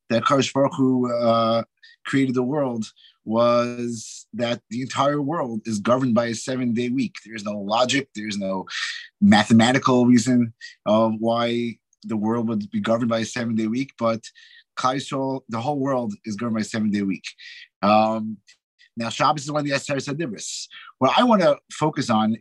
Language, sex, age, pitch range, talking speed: English, male, 30-49, 115-150 Hz, 175 wpm